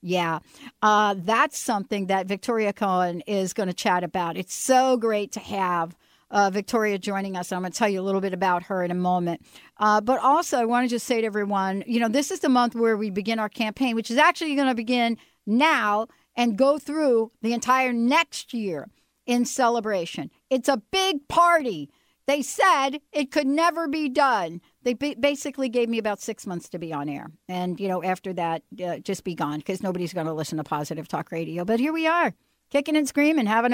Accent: American